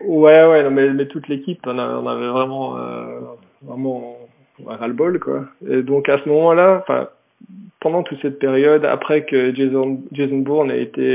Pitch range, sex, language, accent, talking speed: 125-150 Hz, male, French, French, 165 wpm